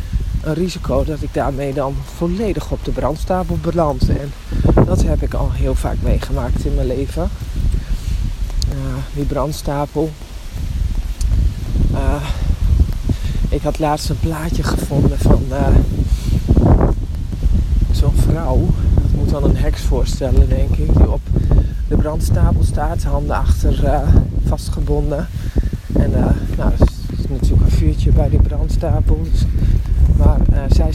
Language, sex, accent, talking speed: Dutch, male, Dutch, 130 wpm